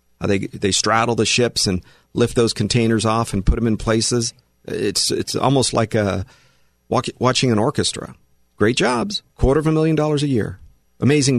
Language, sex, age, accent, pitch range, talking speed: English, male, 40-59, American, 100-135 Hz, 185 wpm